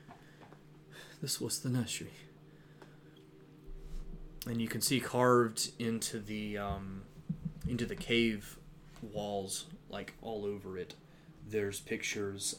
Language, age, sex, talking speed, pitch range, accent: English, 20-39, male, 105 wpm, 100-150 Hz, American